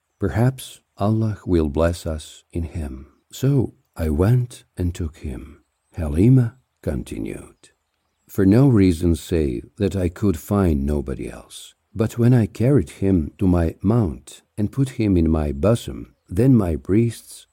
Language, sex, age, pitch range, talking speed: English, male, 60-79, 80-115 Hz, 145 wpm